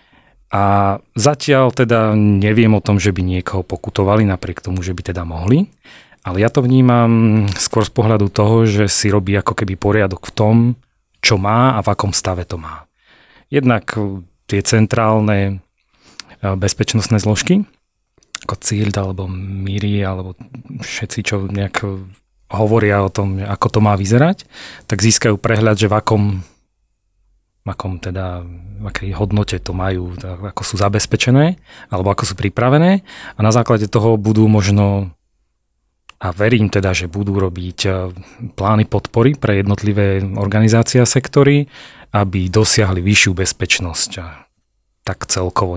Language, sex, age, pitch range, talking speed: Slovak, male, 30-49, 95-115 Hz, 140 wpm